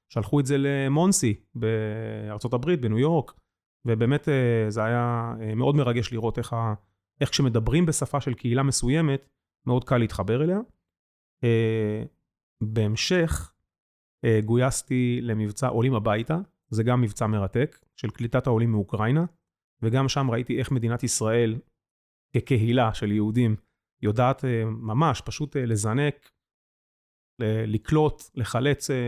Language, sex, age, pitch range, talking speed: Hebrew, male, 30-49, 110-135 Hz, 105 wpm